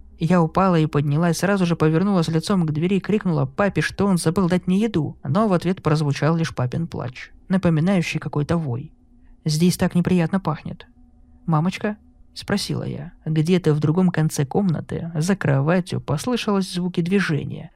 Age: 20-39